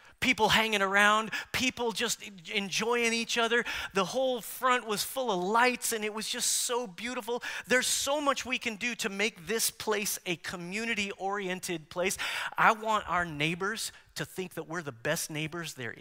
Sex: male